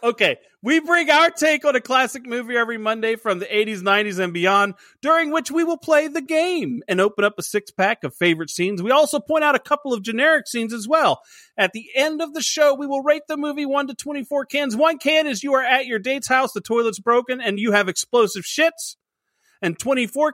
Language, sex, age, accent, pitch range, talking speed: English, male, 40-59, American, 190-280 Hz, 225 wpm